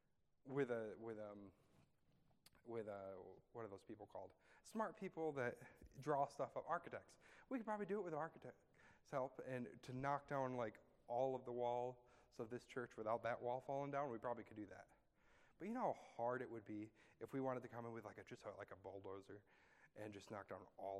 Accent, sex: American, male